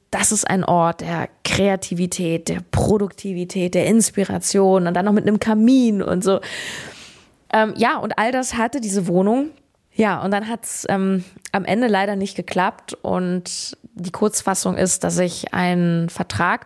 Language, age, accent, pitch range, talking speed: German, 20-39, German, 180-200 Hz, 160 wpm